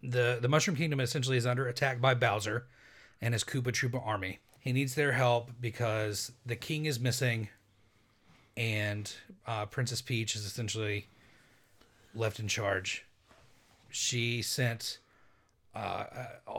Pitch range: 110-125 Hz